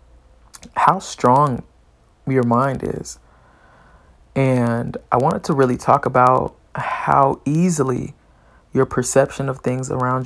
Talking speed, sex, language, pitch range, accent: 110 wpm, male, English, 115-150 Hz, American